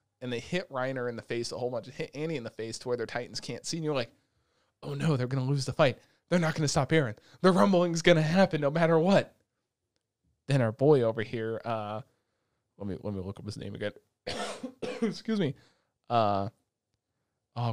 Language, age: English, 20-39